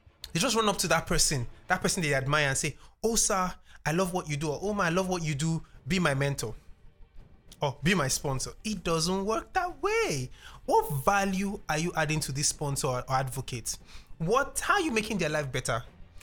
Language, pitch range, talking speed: English, 140-190 Hz, 215 wpm